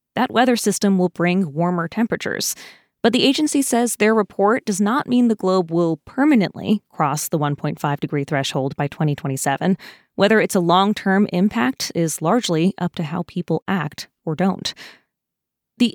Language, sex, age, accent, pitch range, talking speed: English, female, 20-39, American, 170-215 Hz, 155 wpm